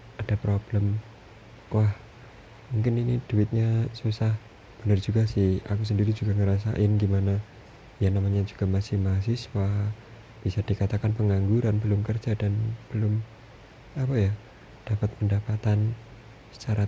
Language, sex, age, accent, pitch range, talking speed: Indonesian, male, 20-39, native, 100-115 Hz, 115 wpm